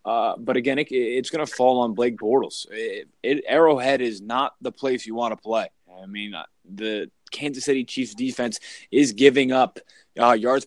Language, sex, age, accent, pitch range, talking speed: English, male, 20-39, American, 120-150 Hz, 180 wpm